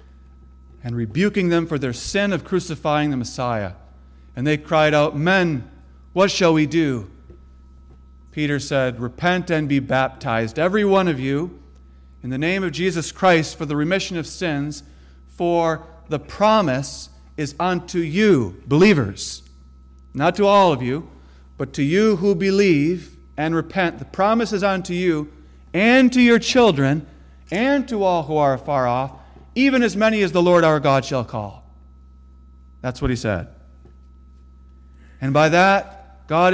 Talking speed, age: 155 wpm, 40-59